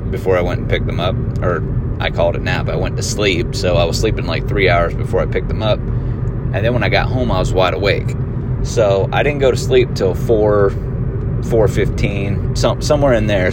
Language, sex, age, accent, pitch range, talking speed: English, male, 30-49, American, 105-125 Hz, 225 wpm